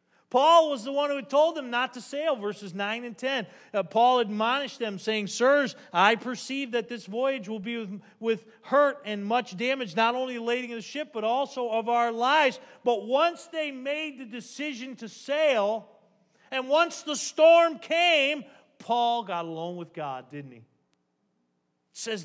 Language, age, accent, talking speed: English, 40-59, American, 180 wpm